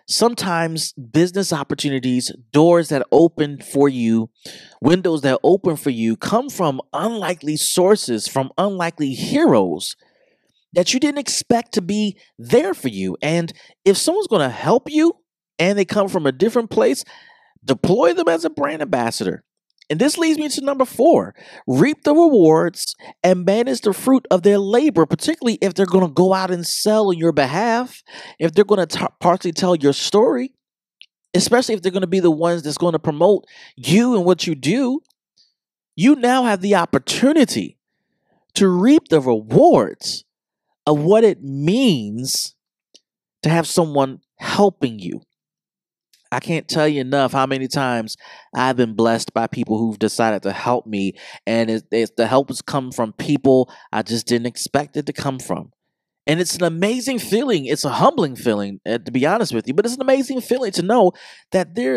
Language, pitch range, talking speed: English, 135-215 Hz, 175 wpm